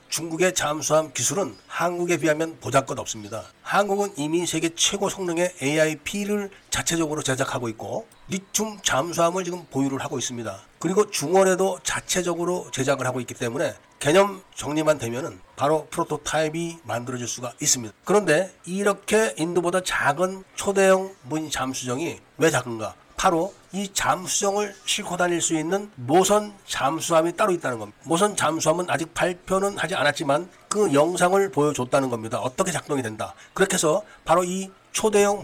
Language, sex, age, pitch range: Korean, male, 40-59, 140-185 Hz